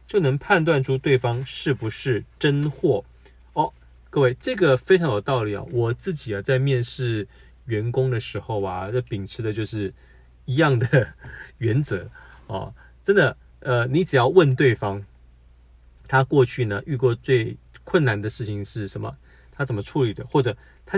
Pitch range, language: 105-130 Hz, Chinese